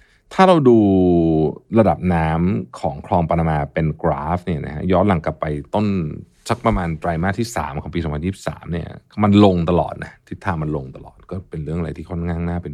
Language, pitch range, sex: Thai, 80-110 Hz, male